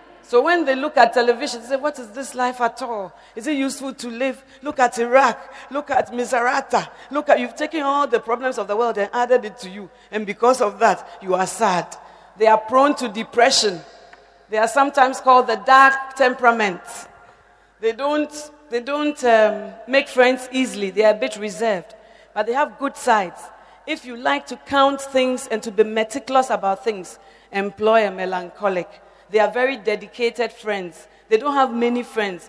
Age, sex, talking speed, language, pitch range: 40-59, female, 190 wpm, English, 210-260 Hz